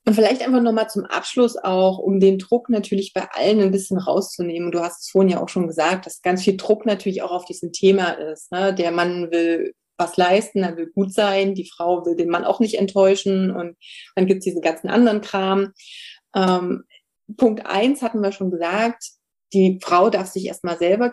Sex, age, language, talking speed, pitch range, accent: female, 30-49, German, 215 wpm, 185-230 Hz, German